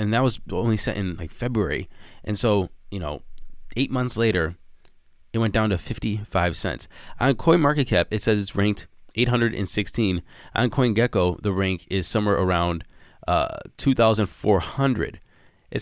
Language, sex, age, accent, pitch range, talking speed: English, male, 20-39, American, 90-110 Hz, 145 wpm